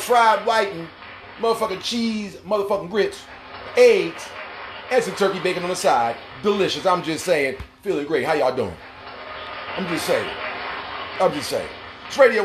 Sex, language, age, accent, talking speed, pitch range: male, English, 40-59, American, 150 wpm, 155-200 Hz